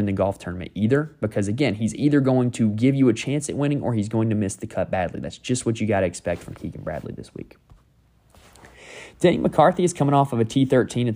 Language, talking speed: English, 245 wpm